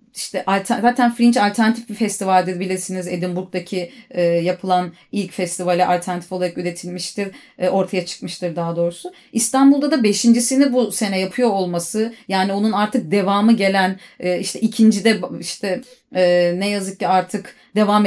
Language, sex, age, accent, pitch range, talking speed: Turkish, female, 30-49, native, 185-235 Hz, 130 wpm